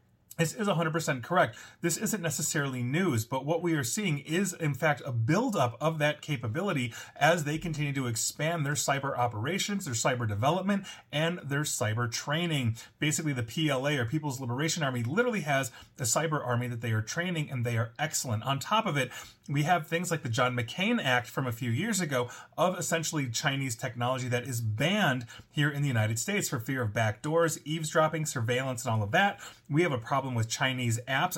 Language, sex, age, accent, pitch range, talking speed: English, male, 30-49, American, 125-165 Hz, 195 wpm